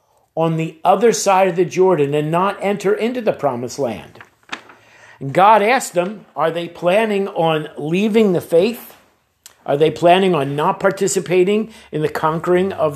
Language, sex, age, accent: English, male, 50-69, American